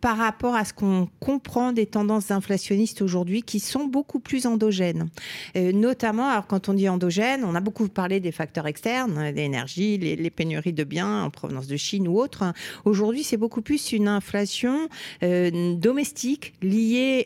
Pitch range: 170-225 Hz